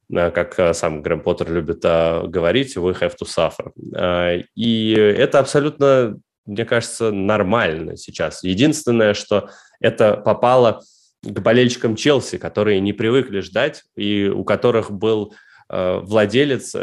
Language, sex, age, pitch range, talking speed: Russian, male, 20-39, 90-110 Hz, 120 wpm